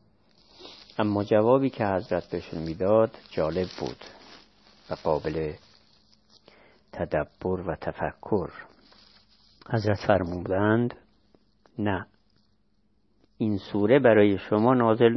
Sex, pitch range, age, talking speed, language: male, 95-115 Hz, 50-69, 85 wpm, Persian